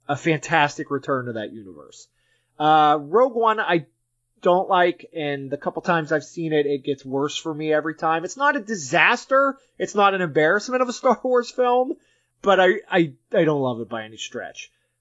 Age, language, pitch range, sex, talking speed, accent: 30-49, English, 140-225 Hz, male, 195 wpm, American